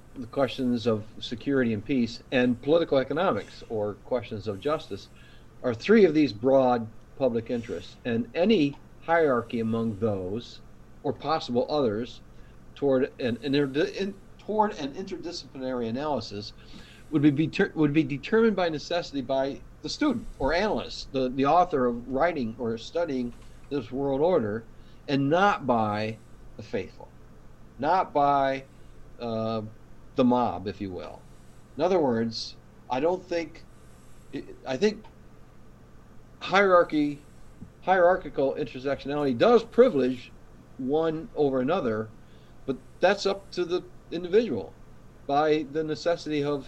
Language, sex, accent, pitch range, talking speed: English, male, American, 115-155 Hz, 125 wpm